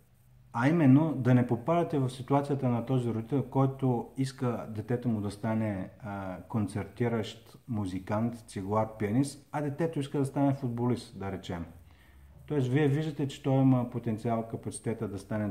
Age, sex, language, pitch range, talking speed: 50-69, male, Bulgarian, 105-135 Hz, 145 wpm